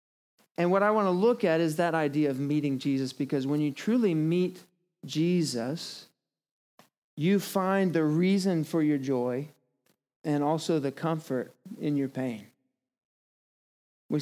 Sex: male